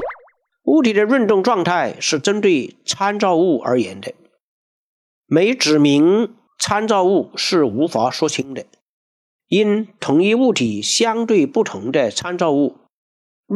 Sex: male